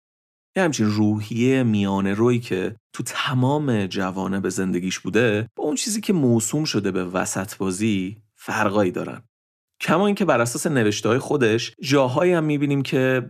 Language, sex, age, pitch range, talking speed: Persian, male, 30-49, 100-120 Hz, 150 wpm